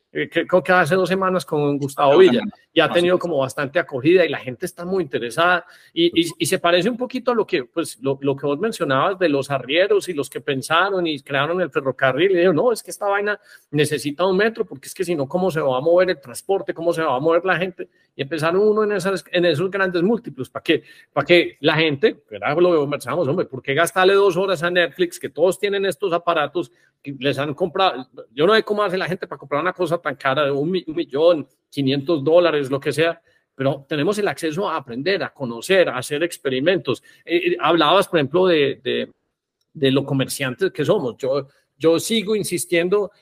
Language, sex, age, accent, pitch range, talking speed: Spanish, male, 40-59, Colombian, 150-190 Hz, 220 wpm